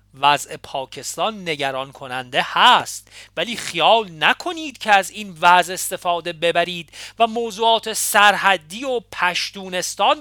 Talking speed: 110 wpm